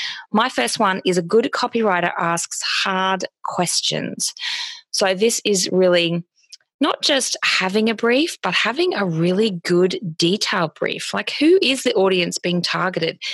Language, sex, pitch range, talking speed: English, female, 180-255 Hz, 150 wpm